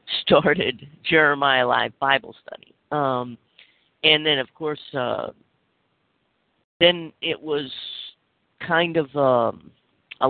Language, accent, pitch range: English, American, 125-155 Hz